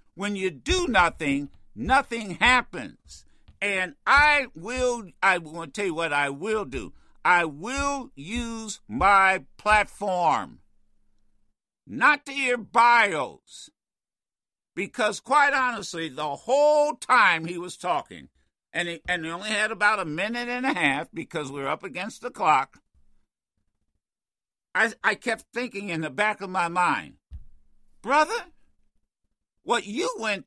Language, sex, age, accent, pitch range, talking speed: English, male, 60-79, American, 175-265 Hz, 135 wpm